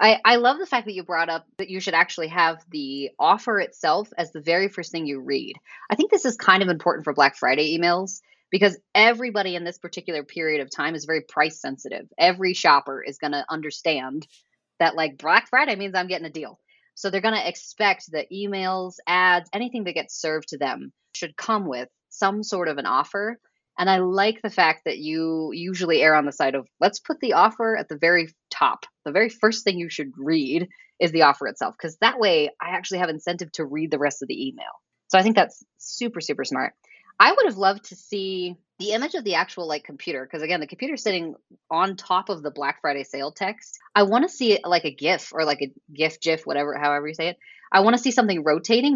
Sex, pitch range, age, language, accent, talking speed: female, 155-205 Hz, 20-39, English, American, 230 wpm